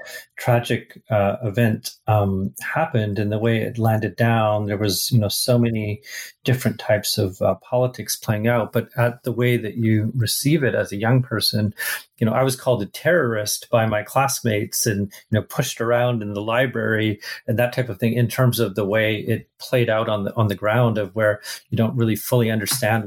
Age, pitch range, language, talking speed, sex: 40-59, 110-120 Hz, English, 205 wpm, male